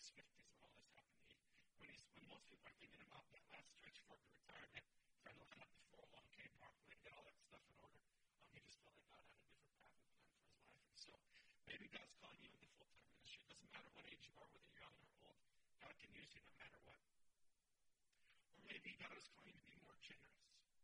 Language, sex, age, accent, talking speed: English, male, 40-59, American, 255 wpm